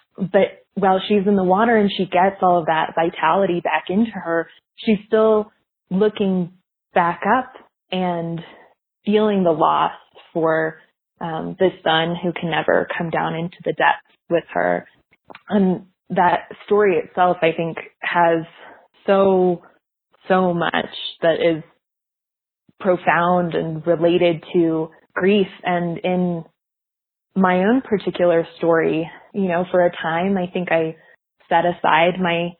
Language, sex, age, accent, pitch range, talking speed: English, female, 20-39, American, 170-195 Hz, 135 wpm